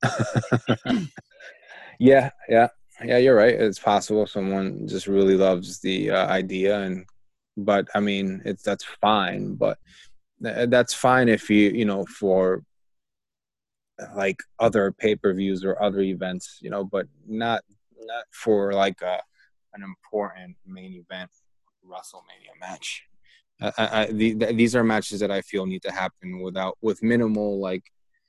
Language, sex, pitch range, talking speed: English, male, 95-110 Hz, 150 wpm